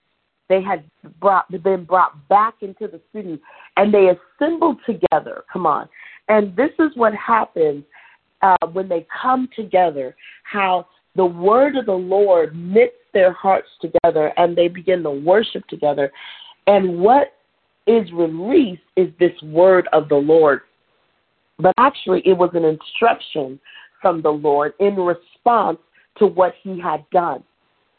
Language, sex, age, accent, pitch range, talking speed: English, female, 40-59, American, 170-230 Hz, 140 wpm